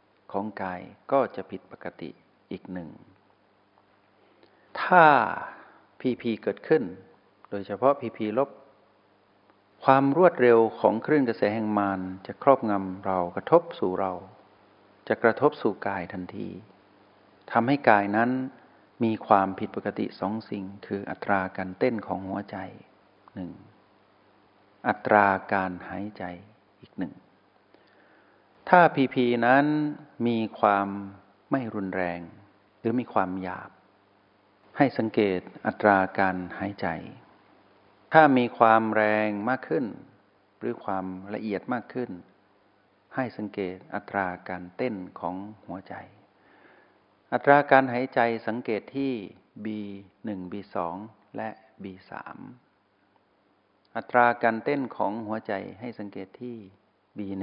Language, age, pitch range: Thai, 60-79, 95-115 Hz